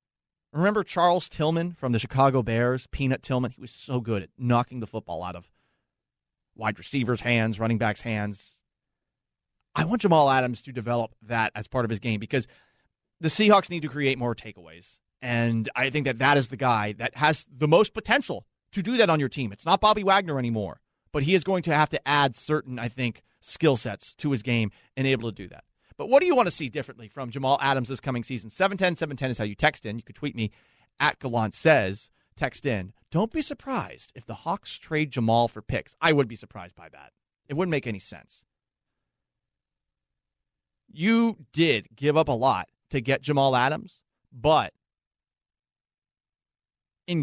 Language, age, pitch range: English, 30-49, 115-150 Hz